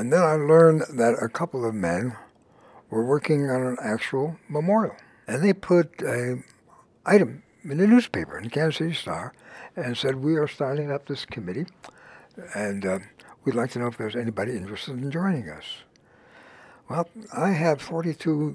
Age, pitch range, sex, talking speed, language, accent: 60-79, 115-170 Hz, male, 170 wpm, English, American